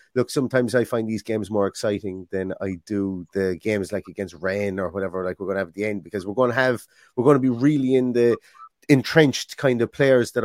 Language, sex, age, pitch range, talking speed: English, male, 30-49, 110-135 Hz, 245 wpm